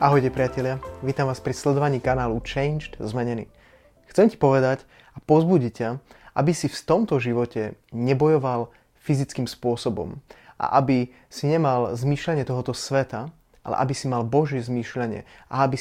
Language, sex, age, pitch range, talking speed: Slovak, male, 30-49, 120-140 Hz, 145 wpm